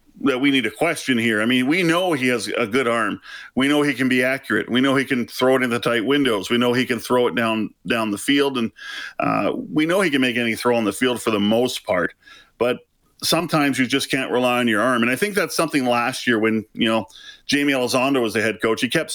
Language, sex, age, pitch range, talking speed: English, male, 40-59, 120-150 Hz, 265 wpm